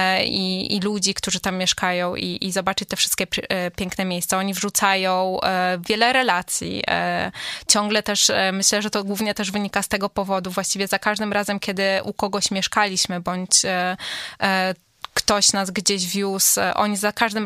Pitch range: 190-220 Hz